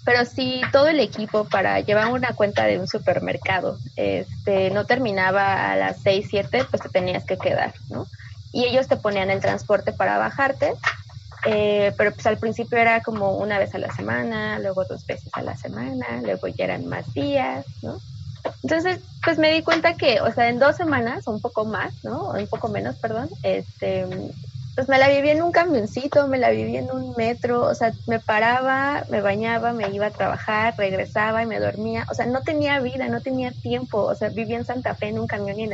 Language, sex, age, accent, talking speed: Spanish, female, 20-39, Mexican, 210 wpm